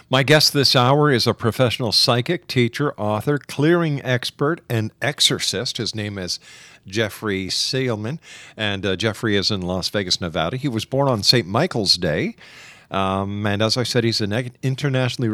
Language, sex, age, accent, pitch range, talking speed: English, male, 50-69, American, 100-130 Hz, 165 wpm